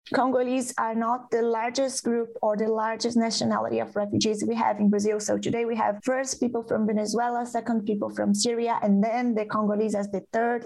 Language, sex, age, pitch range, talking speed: English, female, 20-39, 210-240 Hz, 195 wpm